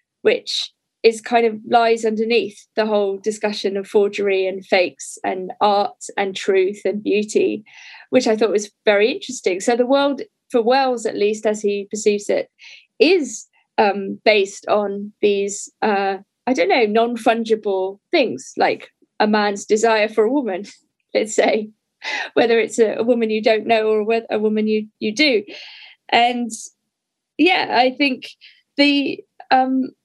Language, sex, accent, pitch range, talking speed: English, female, British, 205-255 Hz, 150 wpm